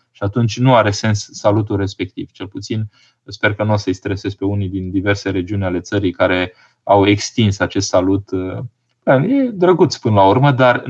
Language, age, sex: Romanian, 20-39, male